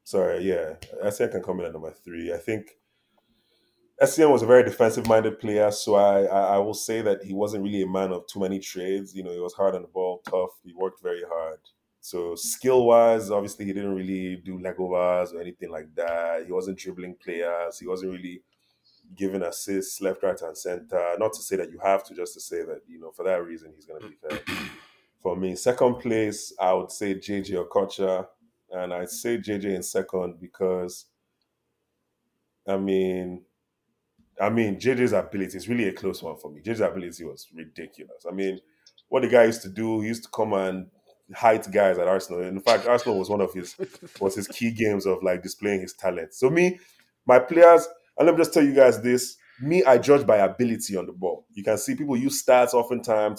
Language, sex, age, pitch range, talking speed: English, male, 20-39, 95-125 Hz, 210 wpm